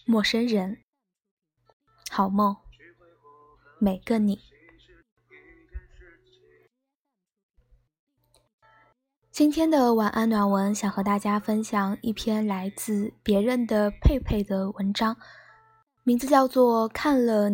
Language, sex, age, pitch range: Chinese, female, 10-29, 200-245 Hz